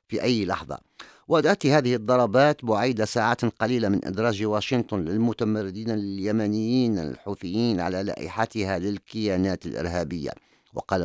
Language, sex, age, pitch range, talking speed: English, male, 50-69, 95-125 Hz, 110 wpm